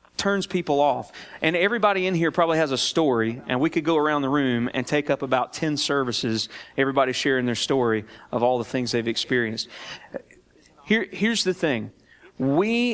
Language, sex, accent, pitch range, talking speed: English, male, American, 125-180 Hz, 175 wpm